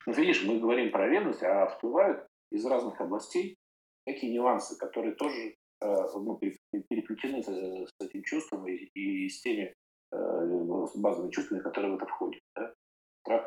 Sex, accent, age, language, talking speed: male, native, 40-59, Russian, 140 wpm